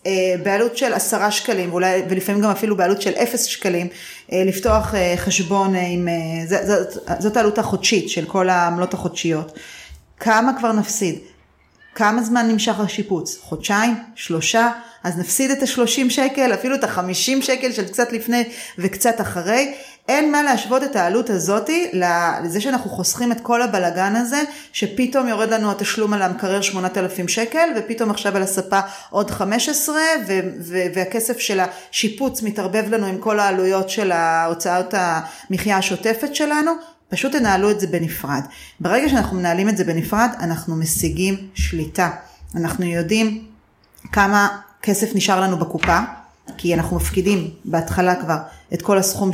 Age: 30-49